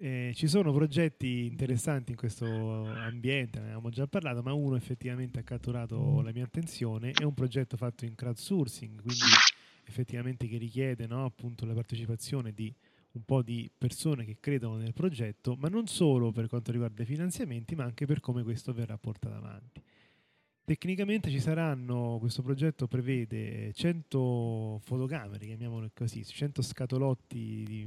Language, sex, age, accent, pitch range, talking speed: Italian, male, 20-39, native, 115-145 Hz, 155 wpm